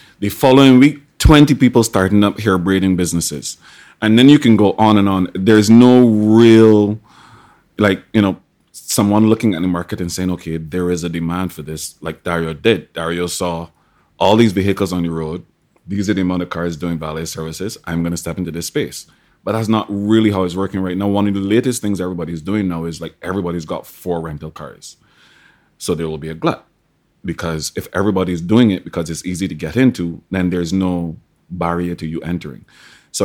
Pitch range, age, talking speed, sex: 85-100 Hz, 30-49, 205 wpm, male